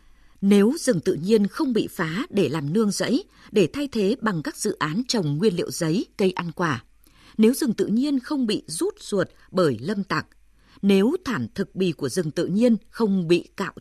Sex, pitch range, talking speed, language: female, 175-240 Hz, 205 wpm, Vietnamese